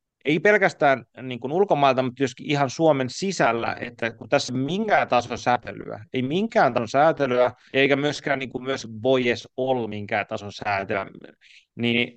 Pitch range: 120-145 Hz